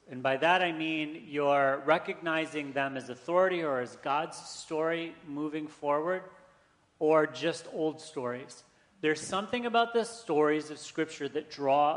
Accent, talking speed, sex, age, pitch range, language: American, 145 wpm, male, 40-59, 130-165 Hz, English